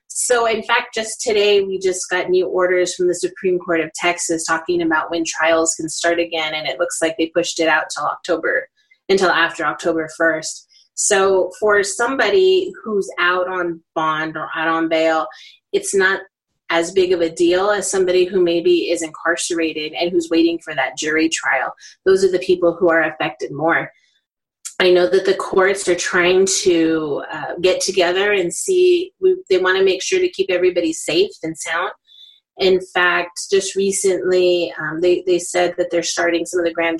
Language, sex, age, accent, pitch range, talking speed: English, female, 30-49, American, 165-195 Hz, 185 wpm